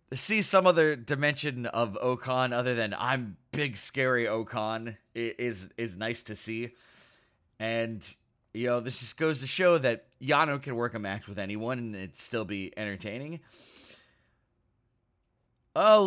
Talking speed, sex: 150 wpm, male